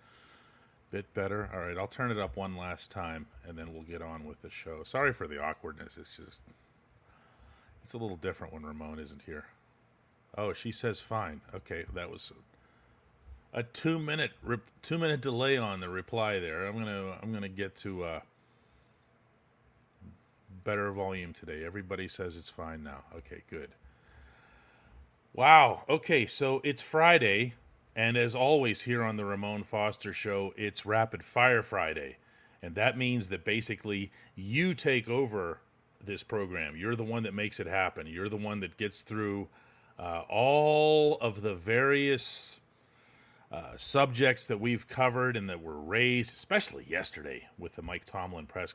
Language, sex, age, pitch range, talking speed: English, male, 40-59, 95-120 Hz, 155 wpm